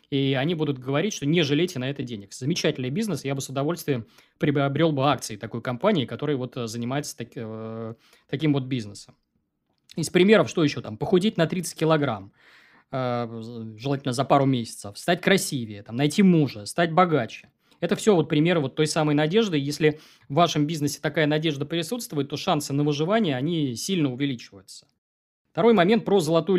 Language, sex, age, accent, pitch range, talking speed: Russian, male, 20-39, native, 125-165 Hz, 160 wpm